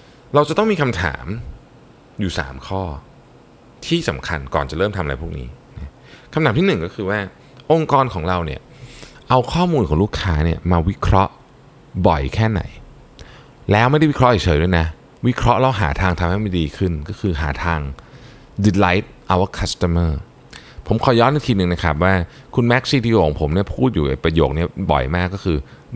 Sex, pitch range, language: male, 80-120 Hz, Thai